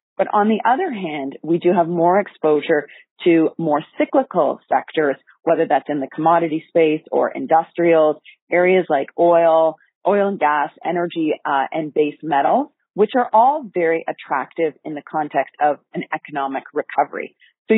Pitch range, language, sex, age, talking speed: 155-195 Hz, English, female, 40-59, 155 wpm